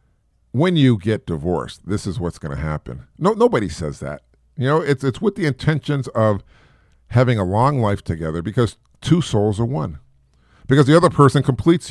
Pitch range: 90-145 Hz